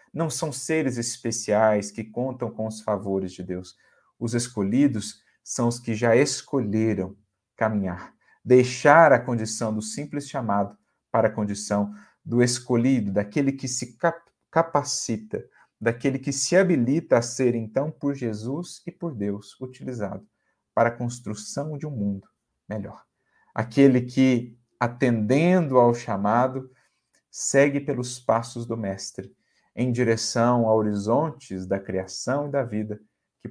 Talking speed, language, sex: 135 wpm, Portuguese, male